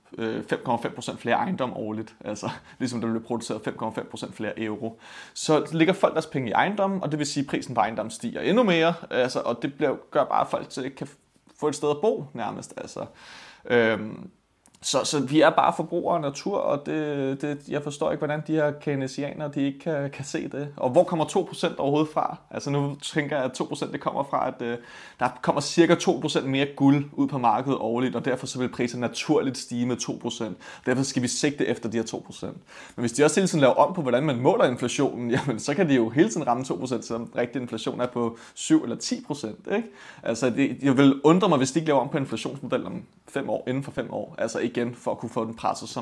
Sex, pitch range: male, 120-150 Hz